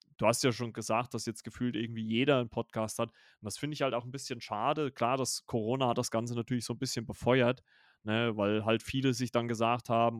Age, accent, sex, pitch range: 30-49, German, male, 115-130 Hz